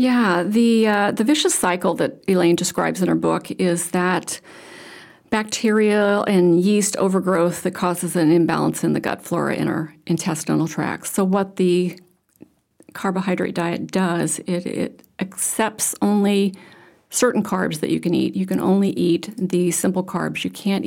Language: English